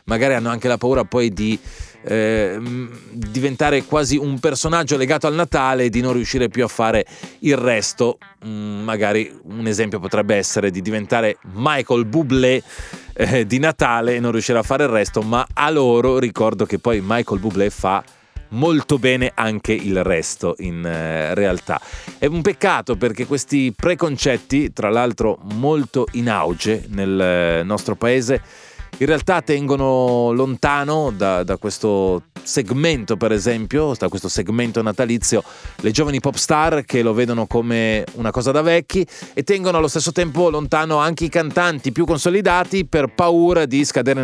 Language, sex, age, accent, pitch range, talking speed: Italian, male, 30-49, native, 110-150 Hz, 155 wpm